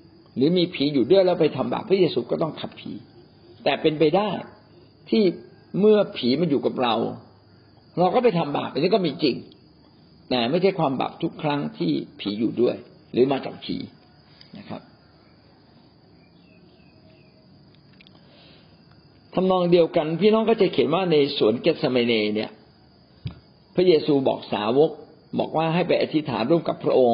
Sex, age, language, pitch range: male, 60-79, Thai, 130-185 Hz